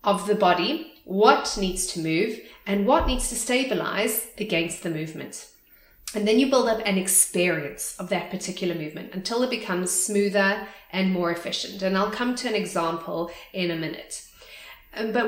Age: 30-49